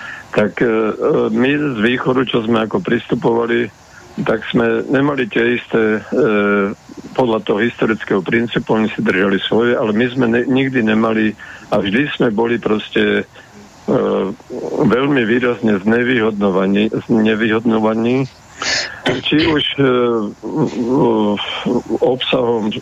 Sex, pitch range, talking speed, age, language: male, 105-125 Hz, 105 wpm, 50-69, Slovak